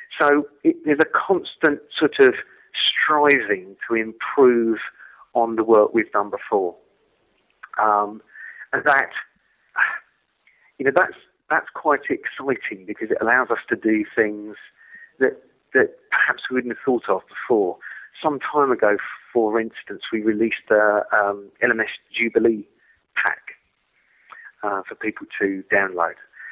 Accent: British